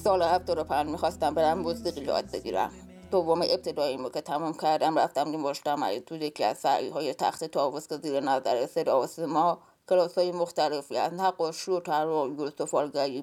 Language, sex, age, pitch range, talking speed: English, female, 20-39, 160-205 Hz, 185 wpm